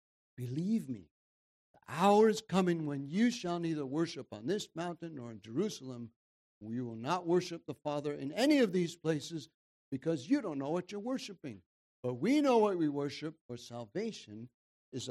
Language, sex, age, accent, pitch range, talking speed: English, male, 60-79, American, 135-195 Hz, 175 wpm